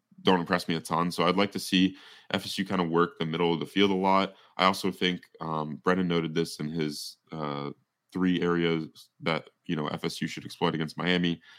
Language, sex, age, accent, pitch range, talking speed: English, male, 20-39, American, 80-95 Hz, 210 wpm